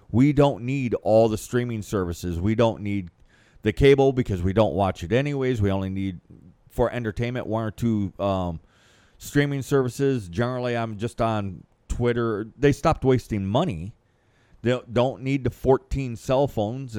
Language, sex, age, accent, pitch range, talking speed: English, male, 40-59, American, 100-130 Hz, 160 wpm